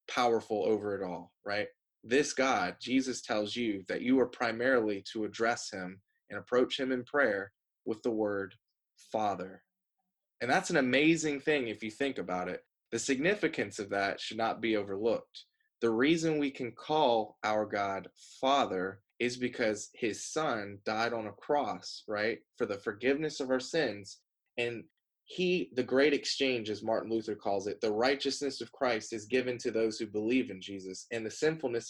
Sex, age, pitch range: male, 20-39, 105-135 Hz